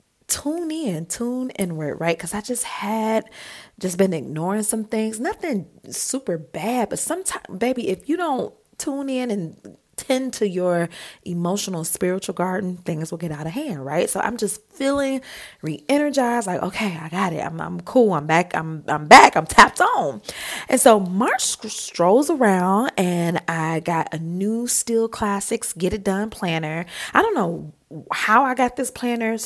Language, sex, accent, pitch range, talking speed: English, female, American, 170-230 Hz, 170 wpm